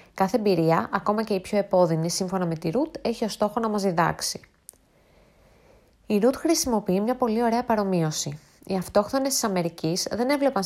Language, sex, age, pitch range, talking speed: Greek, female, 20-39, 175-235 Hz, 170 wpm